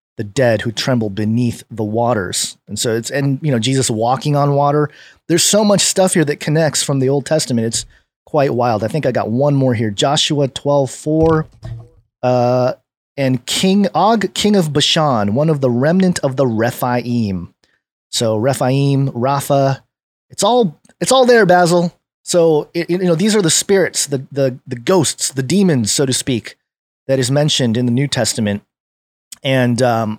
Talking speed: 175 wpm